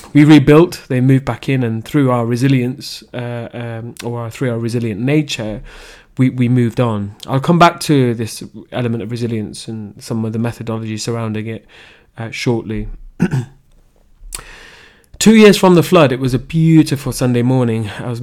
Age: 20-39